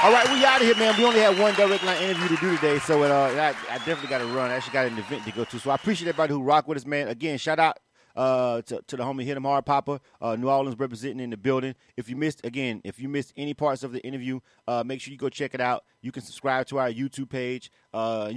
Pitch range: 125-155 Hz